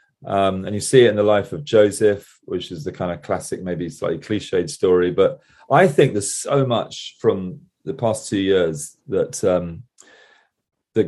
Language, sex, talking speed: English, male, 185 wpm